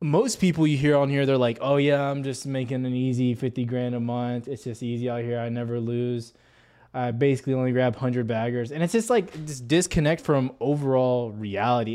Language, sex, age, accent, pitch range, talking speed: English, male, 20-39, American, 120-140 Hz, 210 wpm